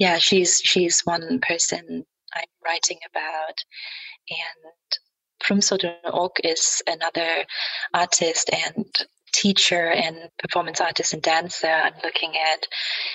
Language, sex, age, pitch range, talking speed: English, female, 20-39, 165-195 Hz, 110 wpm